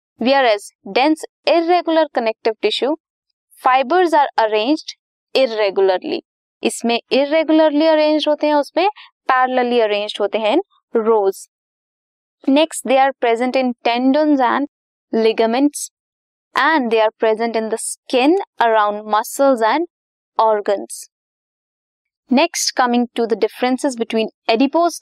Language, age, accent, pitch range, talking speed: Hindi, 20-39, native, 230-320 Hz, 110 wpm